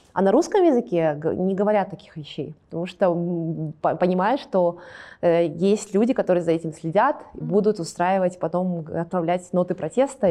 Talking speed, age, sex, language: 140 wpm, 20-39, female, Russian